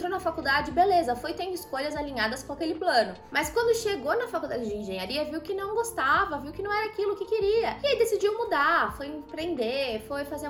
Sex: female